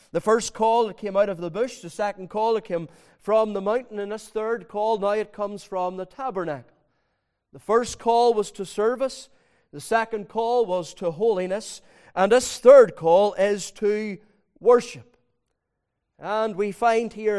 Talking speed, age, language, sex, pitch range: 175 wpm, 40-59, English, male, 150-210 Hz